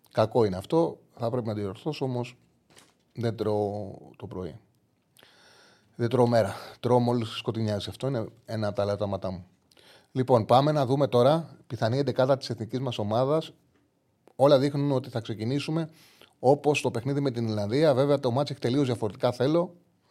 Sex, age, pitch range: male, 30-49, 110-140 Hz